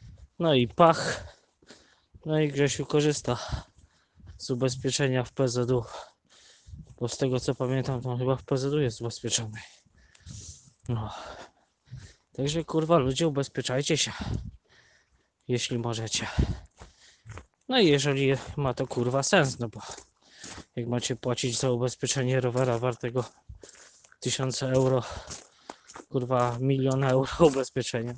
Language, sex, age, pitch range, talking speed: Polish, male, 20-39, 120-140 Hz, 110 wpm